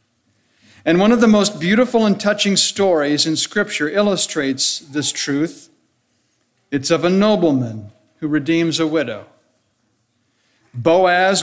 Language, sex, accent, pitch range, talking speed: English, male, American, 155-200 Hz, 120 wpm